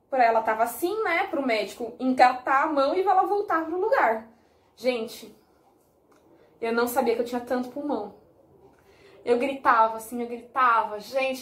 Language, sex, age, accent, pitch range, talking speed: Portuguese, female, 20-39, Brazilian, 225-295 Hz, 160 wpm